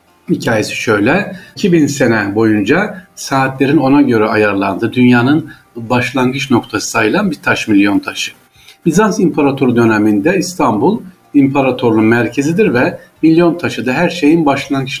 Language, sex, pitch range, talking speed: Turkish, male, 115-170 Hz, 120 wpm